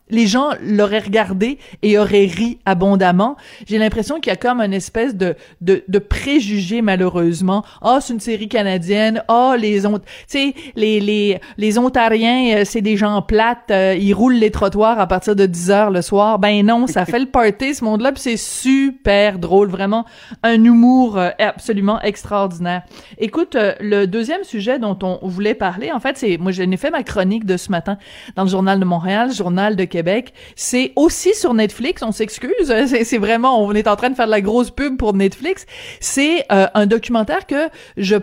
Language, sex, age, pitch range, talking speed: French, female, 30-49, 195-245 Hz, 195 wpm